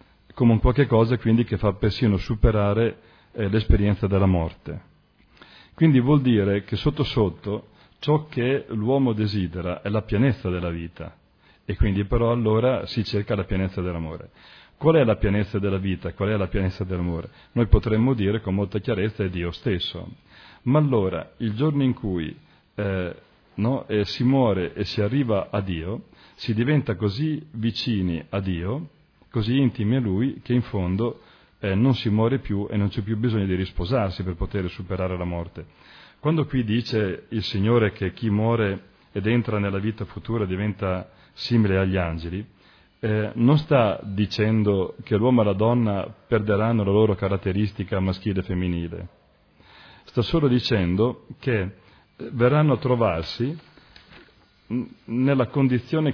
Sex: male